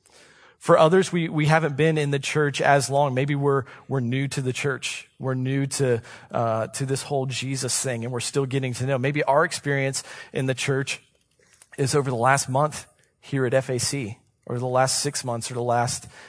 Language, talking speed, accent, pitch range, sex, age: English, 205 wpm, American, 120-140 Hz, male, 40-59